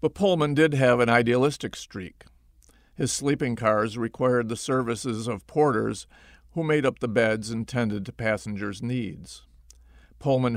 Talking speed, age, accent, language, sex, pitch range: 150 wpm, 50-69, American, English, male, 100-125 Hz